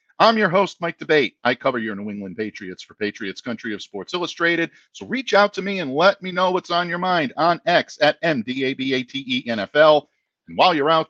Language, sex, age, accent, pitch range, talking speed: English, male, 50-69, American, 130-195 Hz, 255 wpm